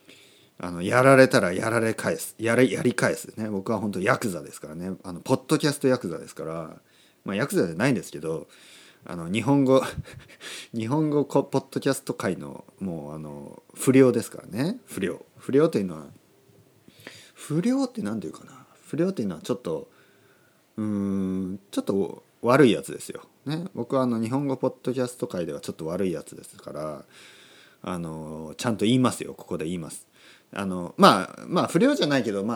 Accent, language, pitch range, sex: native, Japanese, 105-155 Hz, male